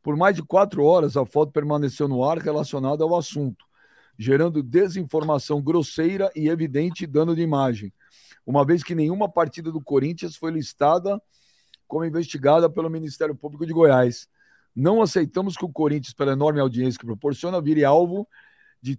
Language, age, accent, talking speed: Portuguese, 50-69, Brazilian, 160 wpm